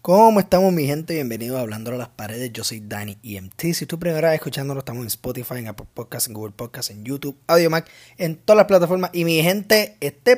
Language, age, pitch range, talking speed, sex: Spanish, 20-39, 140-195 Hz, 225 wpm, male